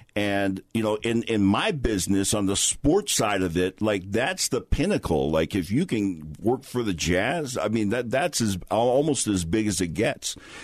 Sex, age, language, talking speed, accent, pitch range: male, 50-69, English, 205 wpm, American, 95-115 Hz